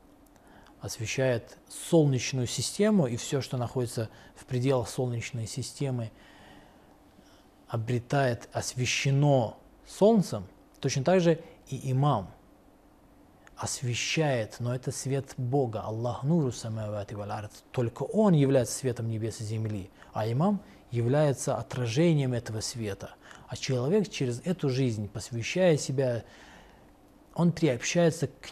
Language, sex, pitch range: Russian, male, 115-145 Hz